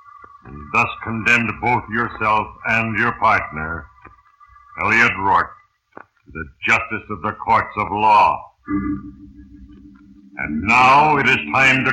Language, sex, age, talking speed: English, male, 60-79, 120 wpm